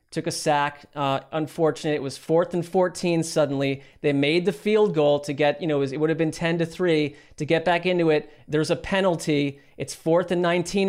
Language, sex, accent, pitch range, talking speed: English, male, American, 145-170 Hz, 220 wpm